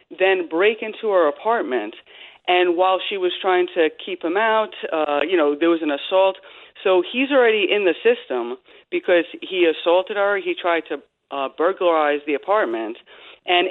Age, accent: 40-59, American